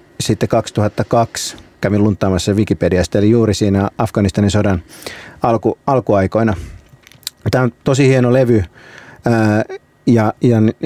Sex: male